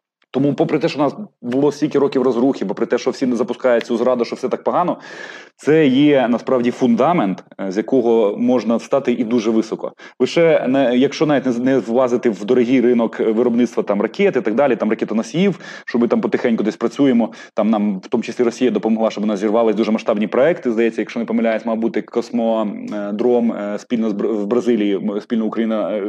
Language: Ukrainian